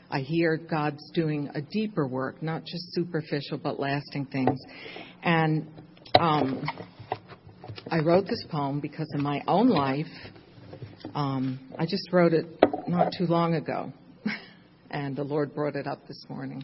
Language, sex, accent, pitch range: English, female, American, 145-170 Hz